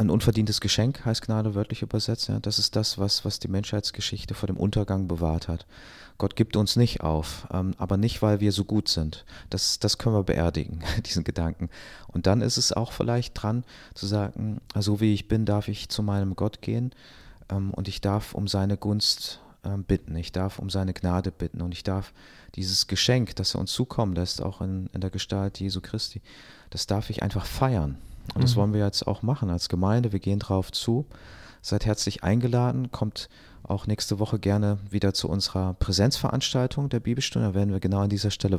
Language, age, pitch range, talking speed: German, 30-49, 95-110 Hz, 195 wpm